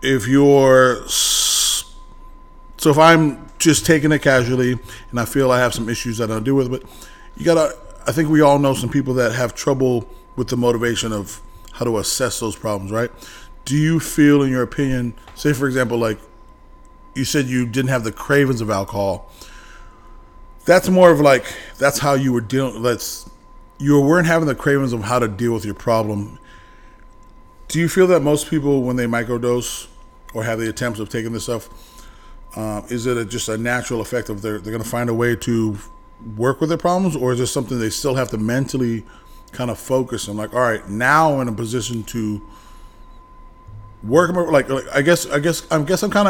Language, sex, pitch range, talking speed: English, male, 115-145 Hz, 200 wpm